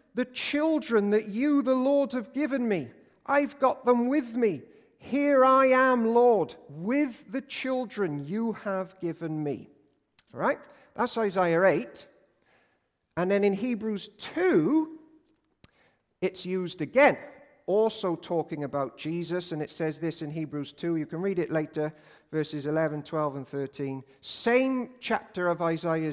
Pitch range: 150-230 Hz